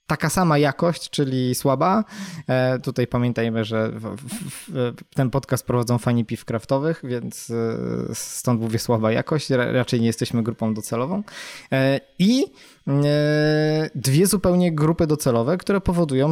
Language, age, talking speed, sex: Polish, 20-39, 115 wpm, male